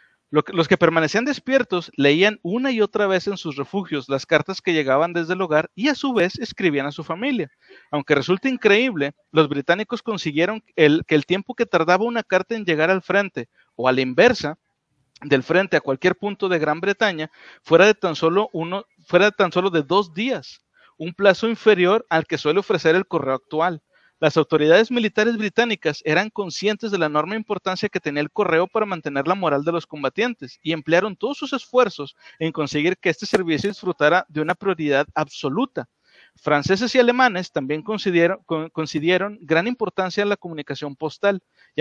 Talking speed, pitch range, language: 180 wpm, 155-210 Hz, Spanish